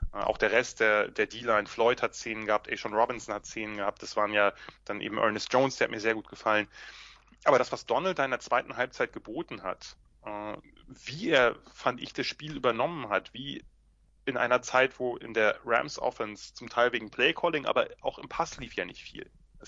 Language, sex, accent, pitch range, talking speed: German, male, German, 105-125 Hz, 205 wpm